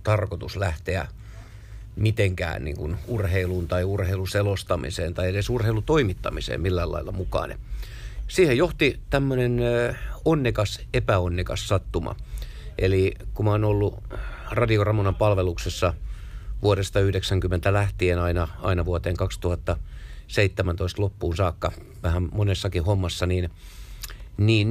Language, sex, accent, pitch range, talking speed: Finnish, male, native, 90-110 Hz, 100 wpm